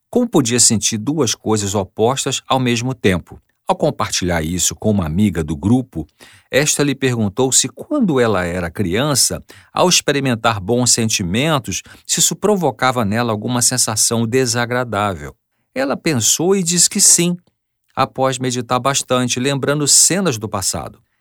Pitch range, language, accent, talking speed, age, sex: 105-135 Hz, Portuguese, Brazilian, 140 wpm, 50-69, male